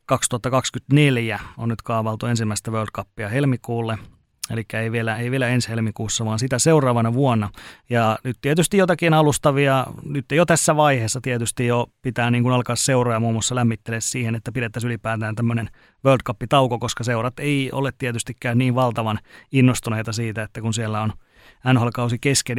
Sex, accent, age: male, native, 30-49